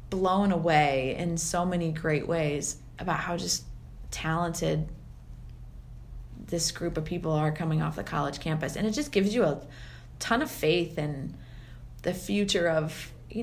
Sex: female